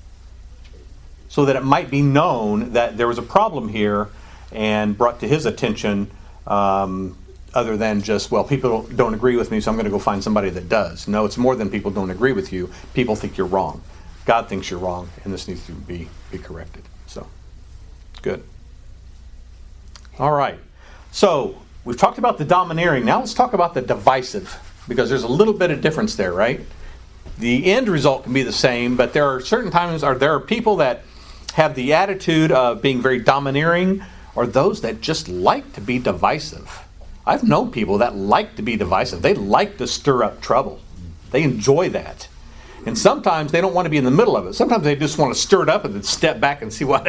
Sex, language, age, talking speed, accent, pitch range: male, English, 50-69, 205 wpm, American, 85-140 Hz